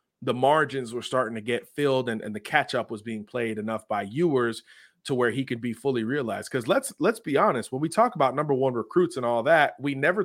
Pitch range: 120-170 Hz